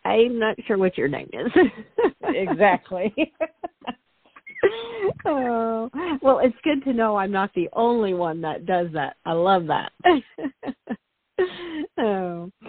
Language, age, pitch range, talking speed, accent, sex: English, 50-69, 135-180 Hz, 125 wpm, American, female